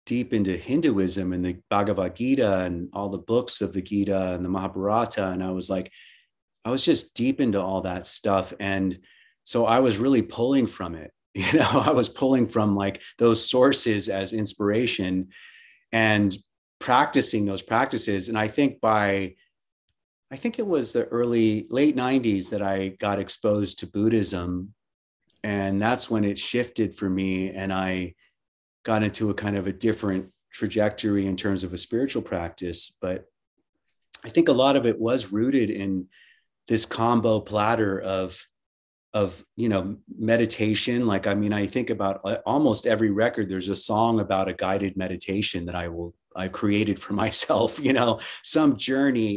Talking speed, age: 170 wpm, 30-49